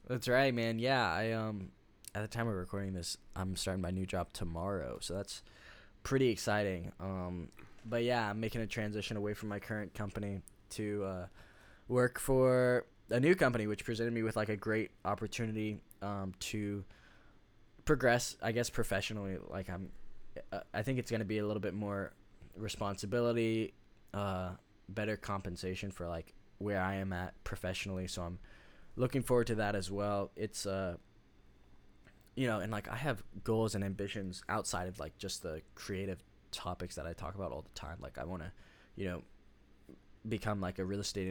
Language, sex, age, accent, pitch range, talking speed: English, male, 10-29, American, 95-110 Hz, 175 wpm